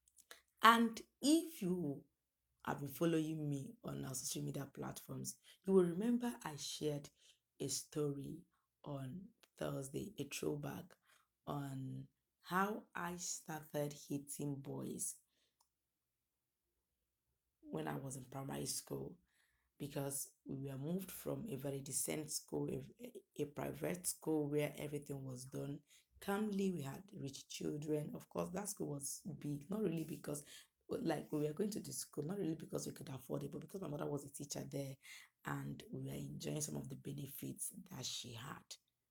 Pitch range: 135-170 Hz